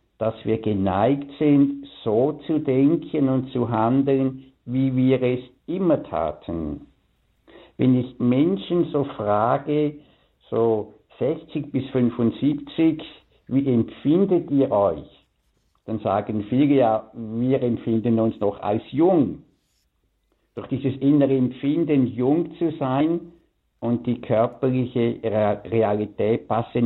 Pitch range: 110-140 Hz